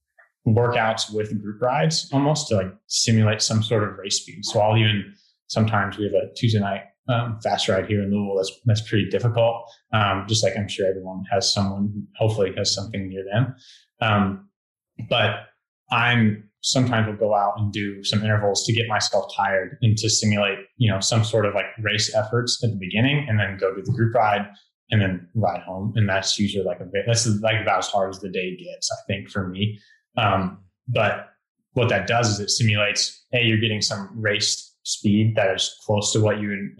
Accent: American